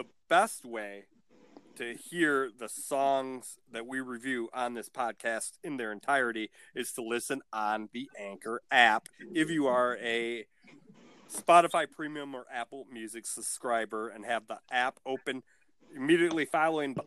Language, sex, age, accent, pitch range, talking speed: English, male, 40-59, American, 120-150 Hz, 135 wpm